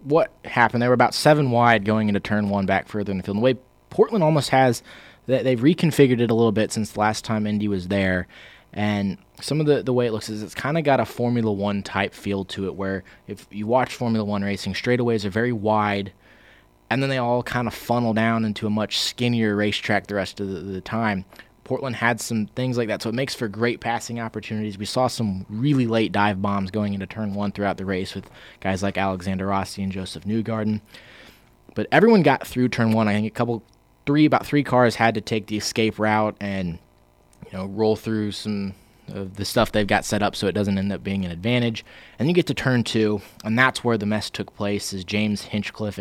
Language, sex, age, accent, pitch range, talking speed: English, male, 20-39, American, 100-115 Hz, 230 wpm